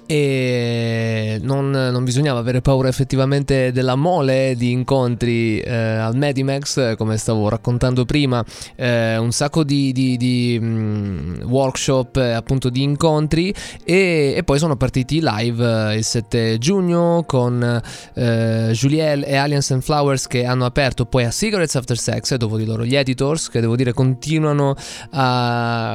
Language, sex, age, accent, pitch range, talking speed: Italian, male, 20-39, native, 120-145 Hz, 150 wpm